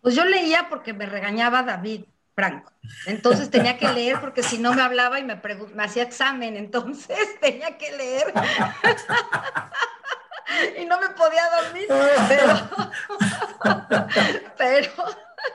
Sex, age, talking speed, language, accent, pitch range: female, 40-59, 130 wpm, Spanish, Mexican, 220-270 Hz